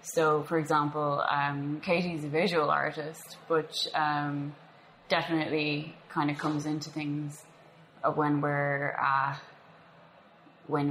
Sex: female